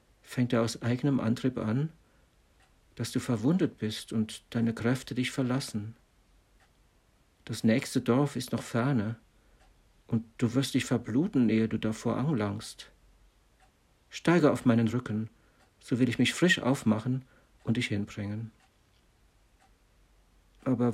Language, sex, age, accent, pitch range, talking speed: German, male, 60-79, German, 110-130 Hz, 125 wpm